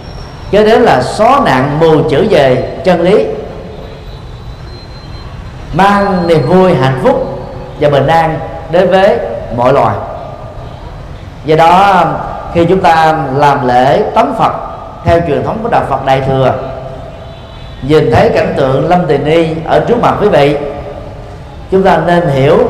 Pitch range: 135-195 Hz